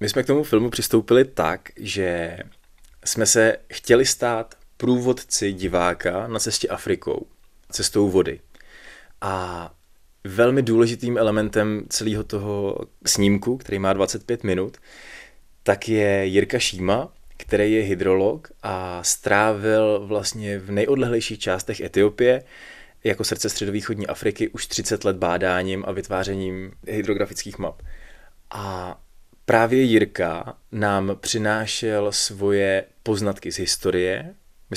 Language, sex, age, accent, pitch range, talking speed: Czech, male, 20-39, native, 95-110 Hz, 115 wpm